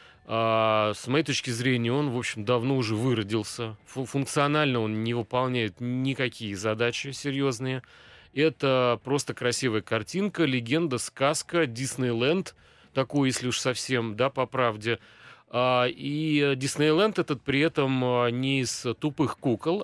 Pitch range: 110-140 Hz